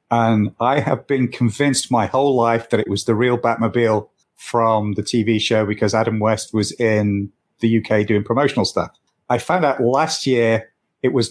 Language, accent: English, British